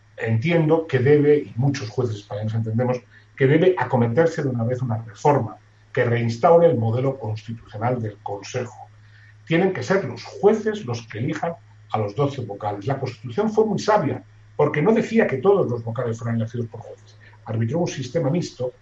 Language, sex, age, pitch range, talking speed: Spanish, male, 40-59, 110-155 Hz, 175 wpm